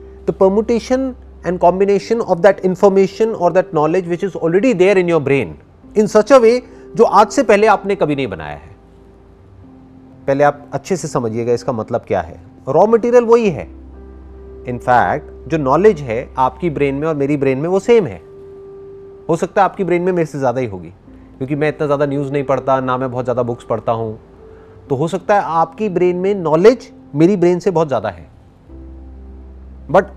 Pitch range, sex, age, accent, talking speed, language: 130-215 Hz, male, 30-49, native, 190 wpm, Hindi